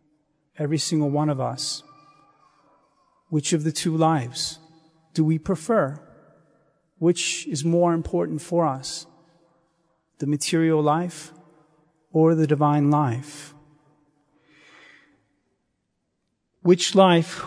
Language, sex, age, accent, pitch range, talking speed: English, male, 40-59, American, 150-170 Hz, 95 wpm